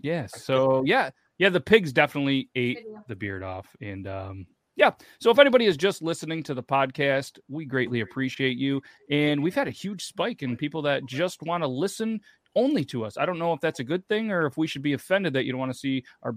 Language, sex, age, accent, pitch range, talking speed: English, male, 30-49, American, 120-165 Hz, 240 wpm